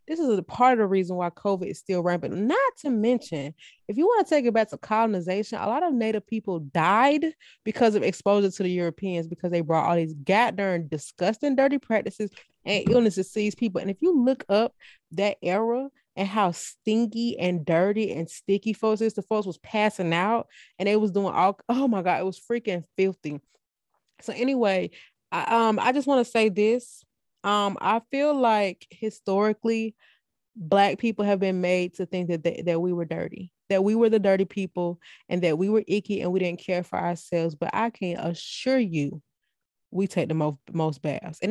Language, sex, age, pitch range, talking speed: English, female, 20-39, 175-220 Hz, 200 wpm